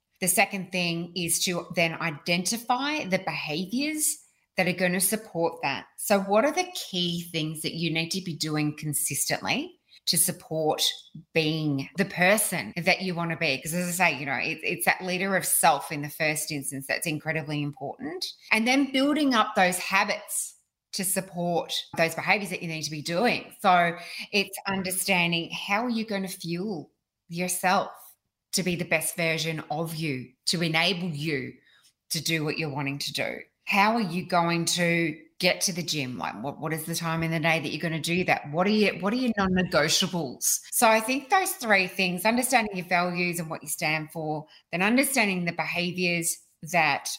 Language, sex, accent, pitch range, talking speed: English, female, Australian, 160-195 Hz, 190 wpm